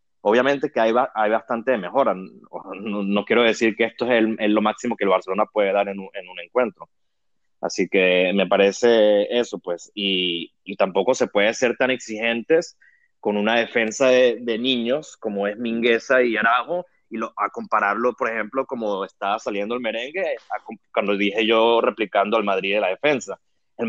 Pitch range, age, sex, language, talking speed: 105-130 Hz, 30-49, male, Spanish, 190 wpm